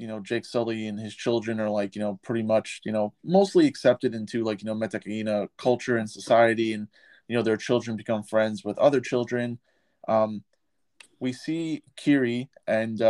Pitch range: 110-125 Hz